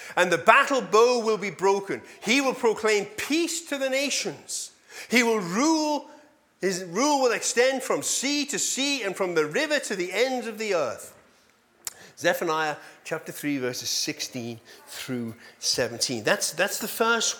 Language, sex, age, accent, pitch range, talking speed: English, male, 40-59, British, 160-270 Hz, 160 wpm